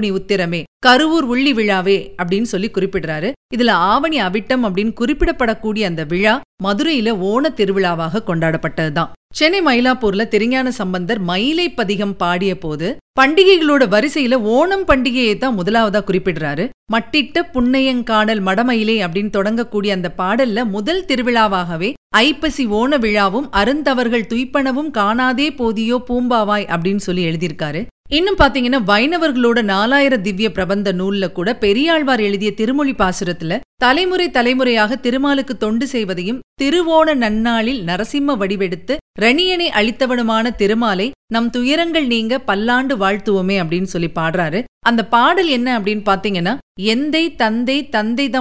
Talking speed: 85 wpm